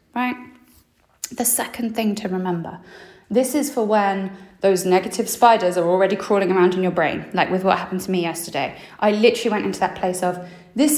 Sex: female